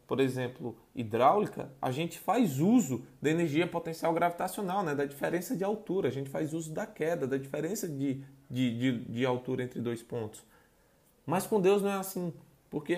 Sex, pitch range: male, 140-185 Hz